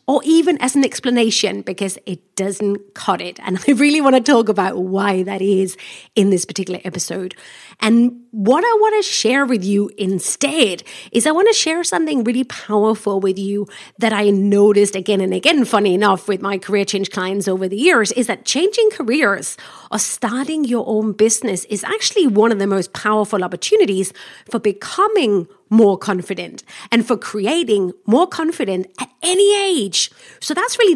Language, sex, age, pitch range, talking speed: English, female, 30-49, 195-265 Hz, 175 wpm